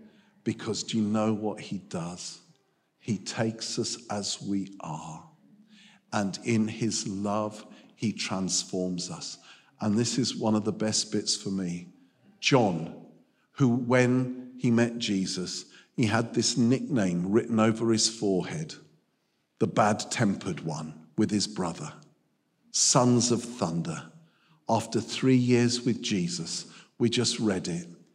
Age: 50-69